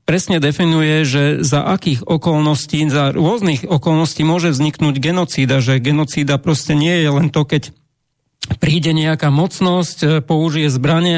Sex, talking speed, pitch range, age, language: male, 135 wpm, 145-170 Hz, 40-59, Slovak